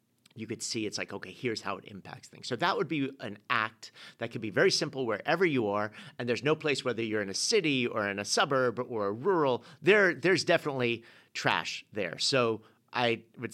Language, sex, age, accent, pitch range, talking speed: English, male, 50-69, American, 110-135 Hz, 215 wpm